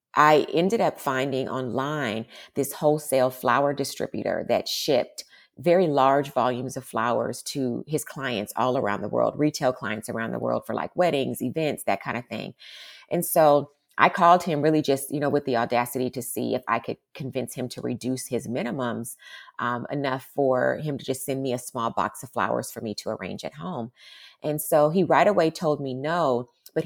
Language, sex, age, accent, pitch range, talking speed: English, female, 30-49, American, 125-150 Hz, 195 wpm